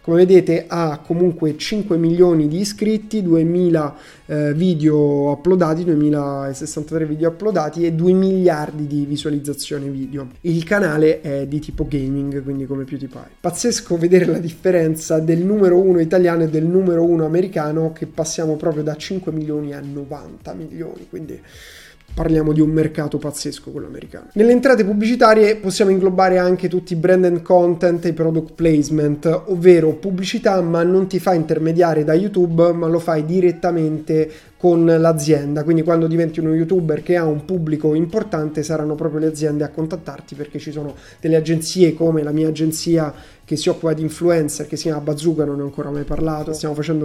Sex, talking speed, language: male, 170 wpm, Italian